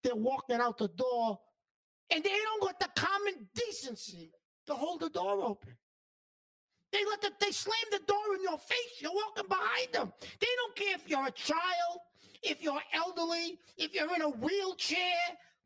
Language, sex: English, male